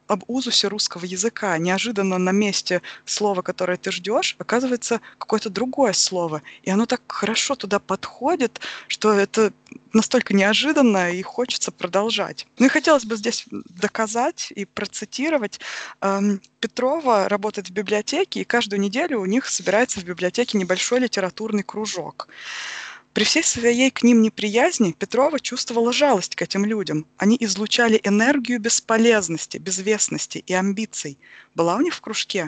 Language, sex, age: Russian, female, 20-39